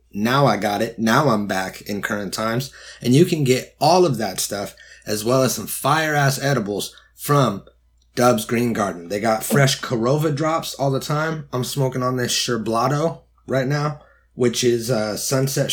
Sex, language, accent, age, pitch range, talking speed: male, English, American, 30-49, 110-140 Hz, 180 wpm